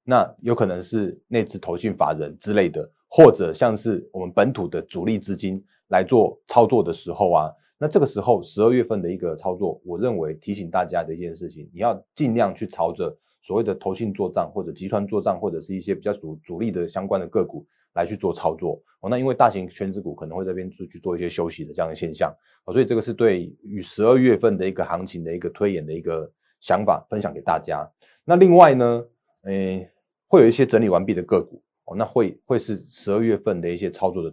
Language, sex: Chinese, male